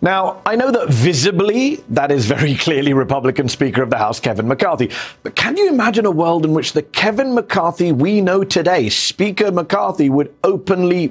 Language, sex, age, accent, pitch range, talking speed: English, male, 40-59, British, 120-195 Hz, 185 wpm